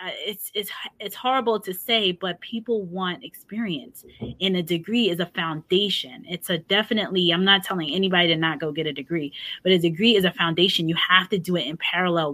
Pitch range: 170-205 Hz